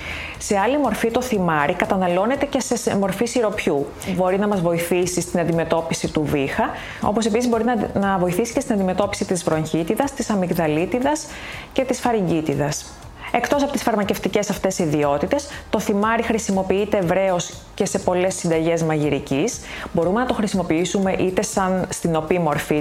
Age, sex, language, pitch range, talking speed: 30-49, female, Greek, 160-225 Hz, 150 wpm